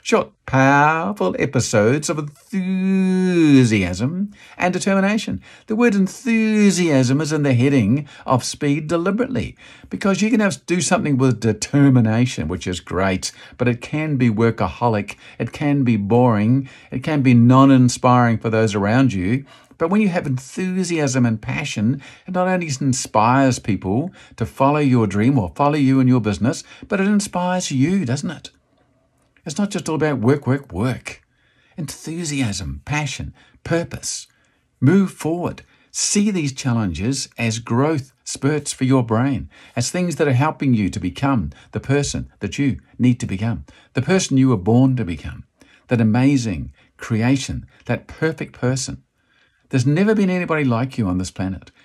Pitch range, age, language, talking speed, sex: 115-160 Hz, 50-69, English, 155 wpm, male